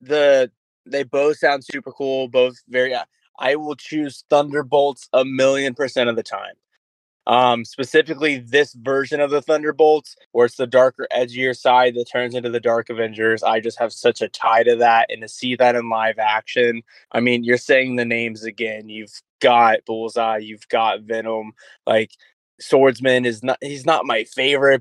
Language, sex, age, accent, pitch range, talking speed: English, male, 20-39, American, 115-135 Hz, 180 wpm